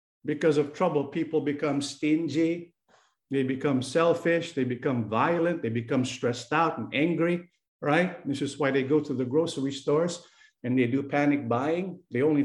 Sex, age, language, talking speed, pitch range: male, 50-69, English, 170 wpm, 145-195 Hz